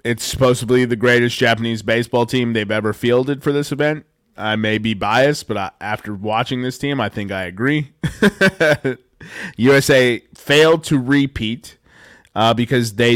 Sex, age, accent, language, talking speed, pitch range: male, 20-39, American, English, 155 wpm, 110-135 Hz